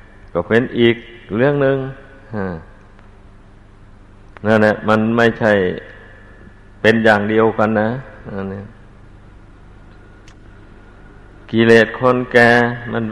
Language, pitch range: Thai, 100-115 Hz